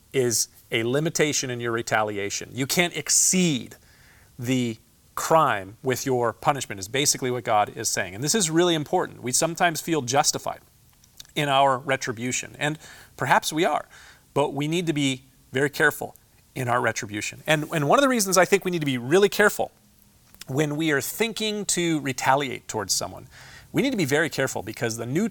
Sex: male